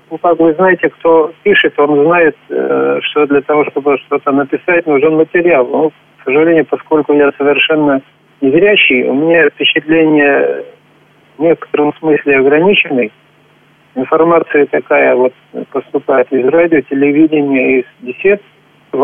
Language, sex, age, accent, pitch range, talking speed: Russian, male, 40-59, native, 145-180 Hz, 125 wpm